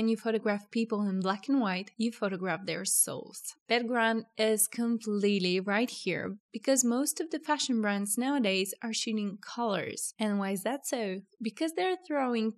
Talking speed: 165 wpm